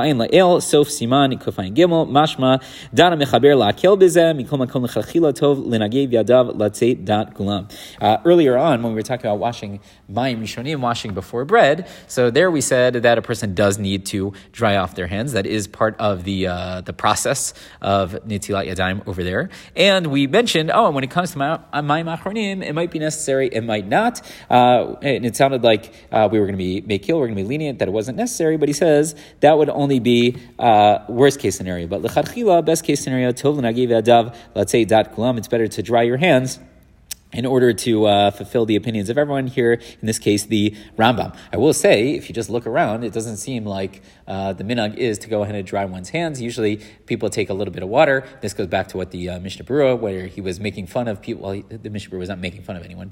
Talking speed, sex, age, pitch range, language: 200 wpm, male, 30-49, 100-135 Hz, English